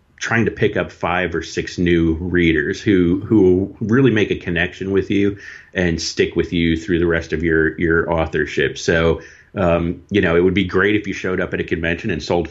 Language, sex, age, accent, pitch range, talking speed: English, male, 30-49, American, 80-90 Hz, 215 wpm